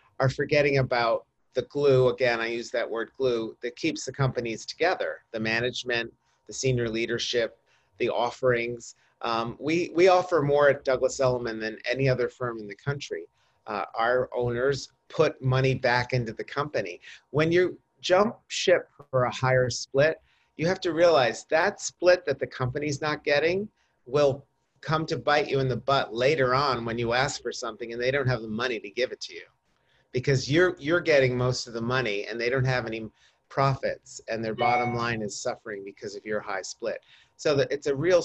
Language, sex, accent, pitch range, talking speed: English, male, American, 120-145 Hz, 190 wpm